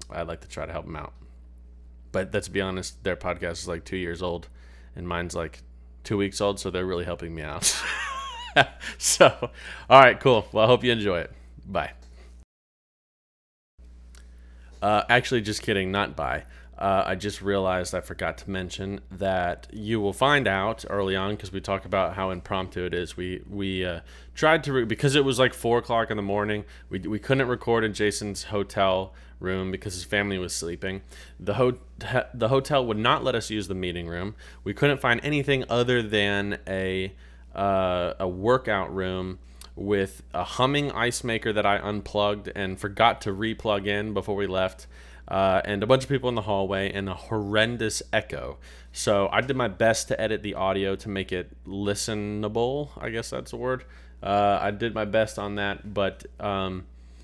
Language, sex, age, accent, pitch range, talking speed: English, male, 20-39, American, 85-105 Hz, 185 wpm